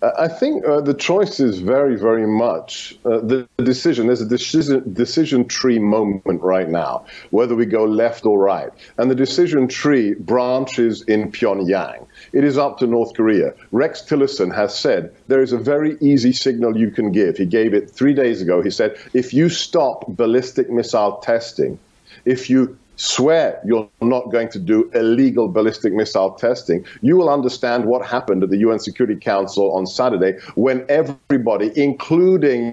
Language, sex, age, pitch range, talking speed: English, male, 50-69, 115-145 Hz, 170 wpm